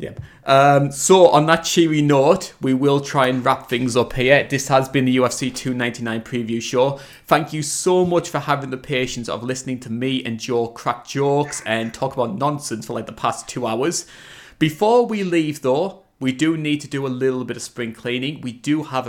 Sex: male